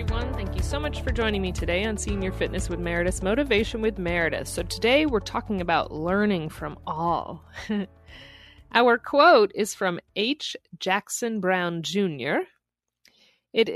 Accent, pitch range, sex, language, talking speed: American, 160-210 Hz, female, English, 150 wpm